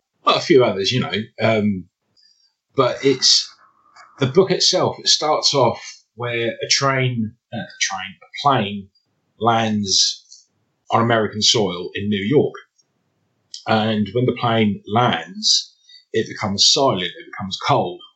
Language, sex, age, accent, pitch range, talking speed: English, male, 30-49, British, 100-130 Hz, 135 wpm